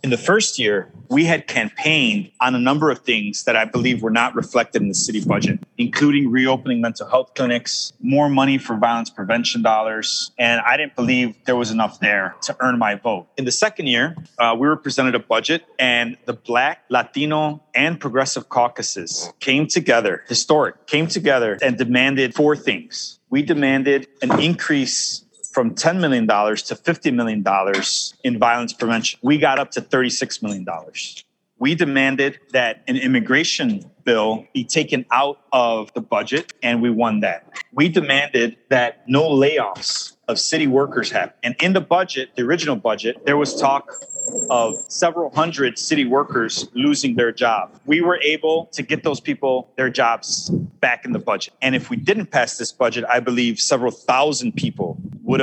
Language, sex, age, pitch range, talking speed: English, male, 30-49, 120-160 Hz, 170 wpm